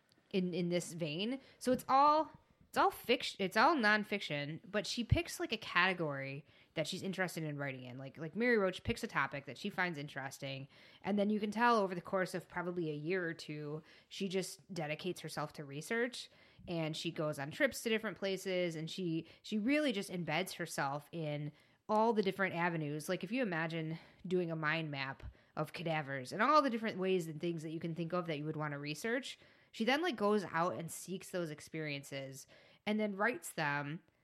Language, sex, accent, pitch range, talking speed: English, female, American, 150-200 Hz, 205 wpm